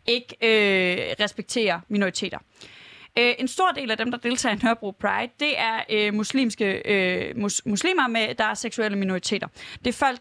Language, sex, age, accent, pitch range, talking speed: Danish, female, 20-39, native, 215-280 Hz, 160 wpm